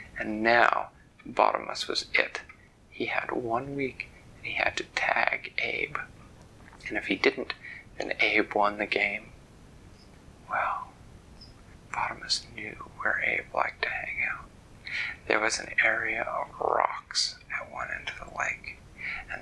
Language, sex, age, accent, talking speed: English, male, 30-49, American, 140 wpm